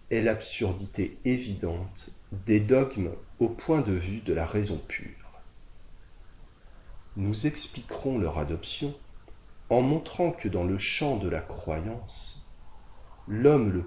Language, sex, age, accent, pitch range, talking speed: French, male, 40-59, French, 90-120 Hz, 120 wpm